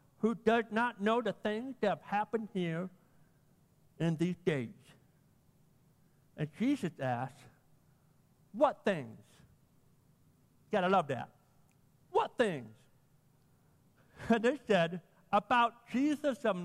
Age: 60-79